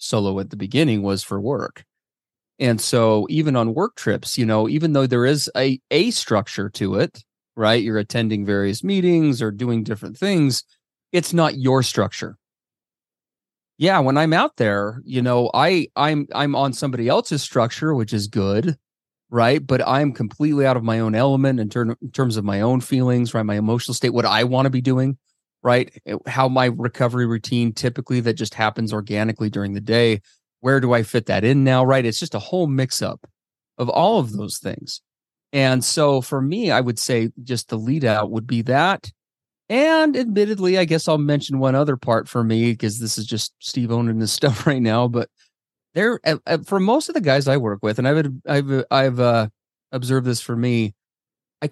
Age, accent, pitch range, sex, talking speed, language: 30-49, American, 115-140 Hz, male, 195 wpm, English